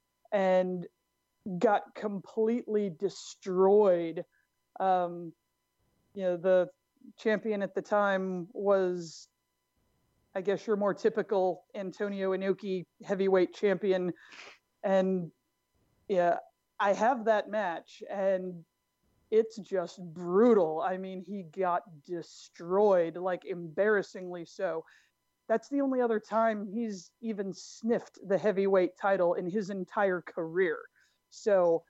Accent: American